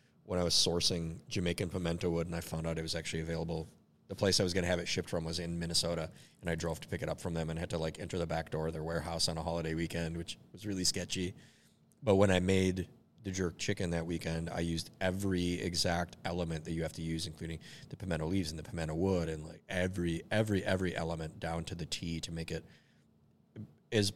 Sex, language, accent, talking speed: male, English, American, 240 wpm